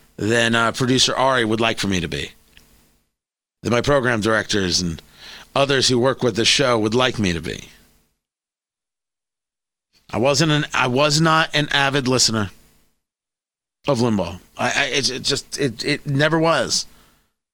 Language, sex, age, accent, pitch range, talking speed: English, male, 40-59, American, 120-180 Hz, 155 wpm